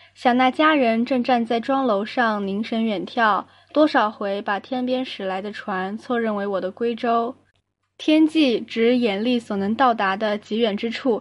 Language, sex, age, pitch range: Chinese, female, 10-29, 200-260 Hz